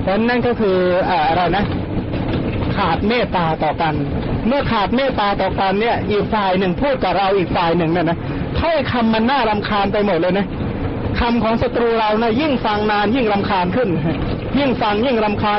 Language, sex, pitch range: Thai, male, 180-215 Hz